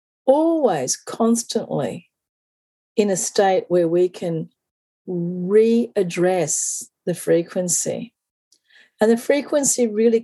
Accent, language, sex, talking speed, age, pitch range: Australian, English, female, 90 wpm, 40-59, 175-230 Hz